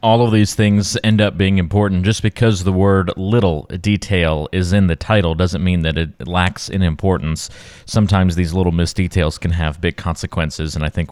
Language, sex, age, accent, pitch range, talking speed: English, male, 30-49, American, 85-110 Hz, 200 wpm